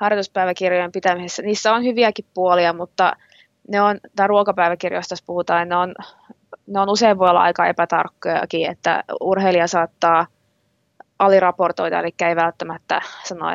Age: 20-39